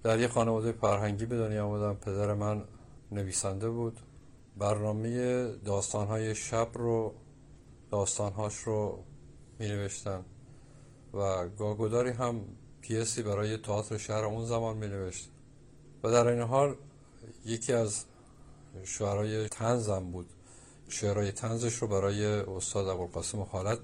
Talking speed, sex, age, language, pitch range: 115 wpm, male, 50-69, Persian, 105-125 Hz